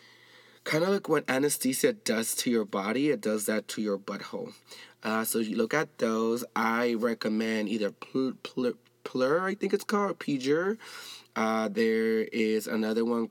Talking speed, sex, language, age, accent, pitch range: 155 wpm, male, English, 20-39, American, 110-135 Hz